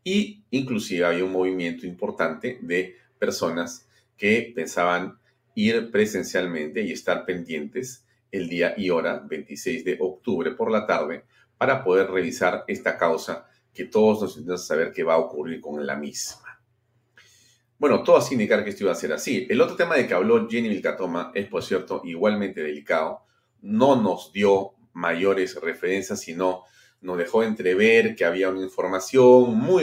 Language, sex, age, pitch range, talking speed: Spanish, male, 40-59, 90-125 Hz, 160 wpm